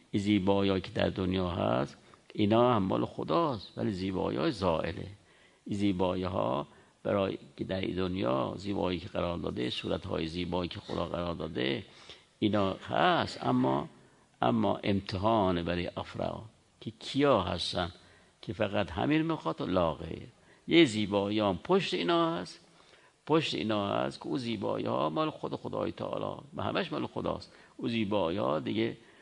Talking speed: 130 wpm